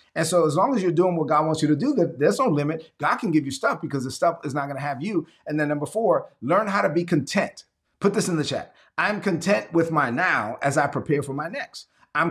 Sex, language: male, English